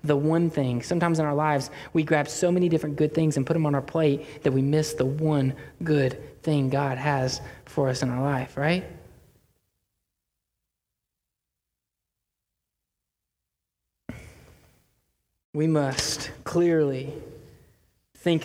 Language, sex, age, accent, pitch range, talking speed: English, male, 20-39, American, 130-155 Hz, 125 wpm